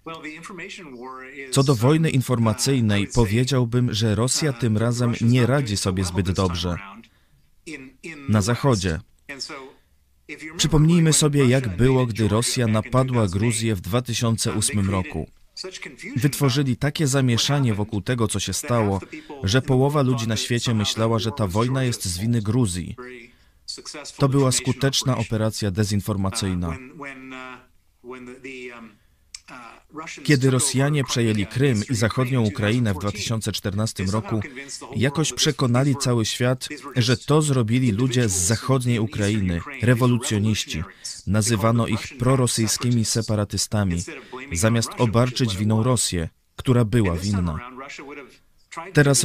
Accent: native